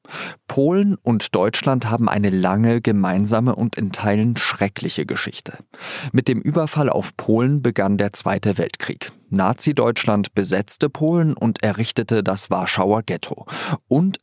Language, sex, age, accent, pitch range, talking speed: German, male, 40-59, German, 100-125 Hz, 125 wpm